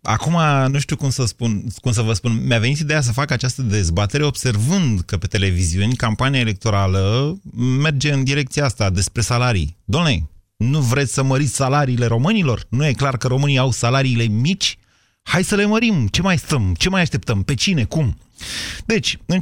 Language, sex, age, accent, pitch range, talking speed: Romanian, male, 30-49, native, 100-130 Hz, 180 wpm